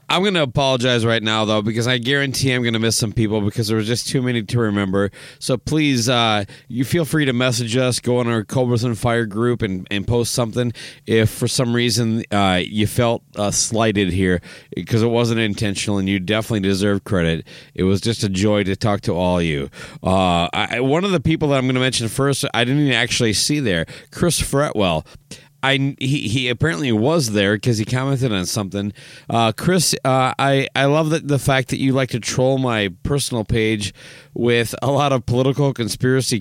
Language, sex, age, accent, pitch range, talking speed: English, male, 30-49, American, 105-135 Hz, 210 wpm